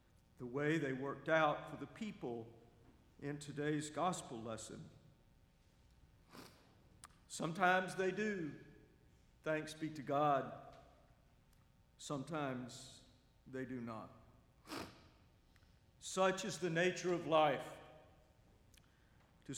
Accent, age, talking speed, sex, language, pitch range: American, 50-69, 90 wpm, male, English, 135-185 Hz